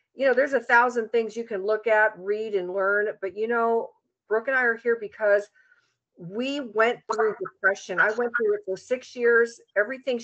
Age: 50-69